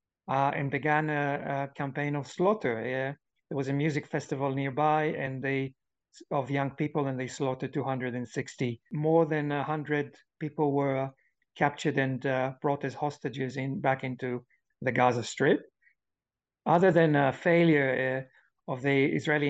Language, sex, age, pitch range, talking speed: English, male, 50-69, 130-150 Hz, 155 wpm